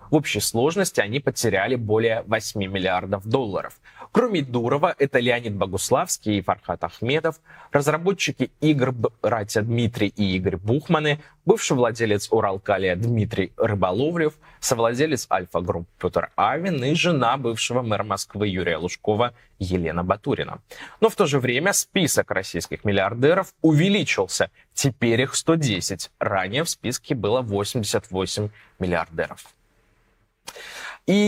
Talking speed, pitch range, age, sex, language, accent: 115 wpm, 105-135 Hz, 20-39, male, Russian, native